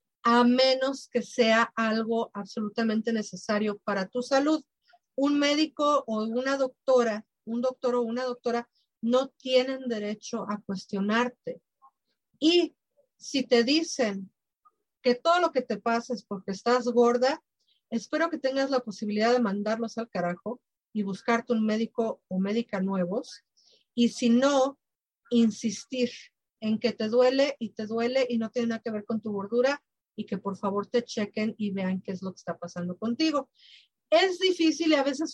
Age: 40-59